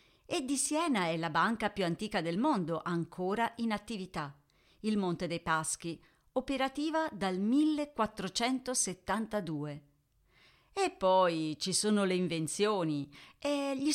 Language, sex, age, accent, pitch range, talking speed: Italian, female, 40-59, native, 165-245 Hz, 120 wpm